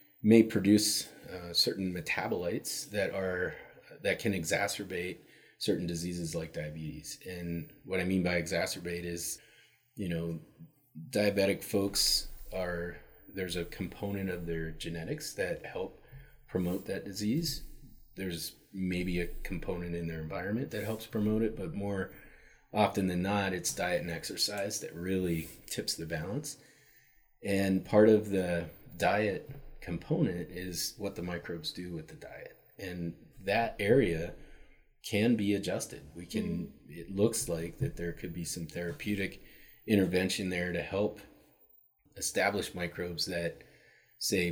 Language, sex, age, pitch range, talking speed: English, male, 30-49, 85-105 Hz, 135 wpm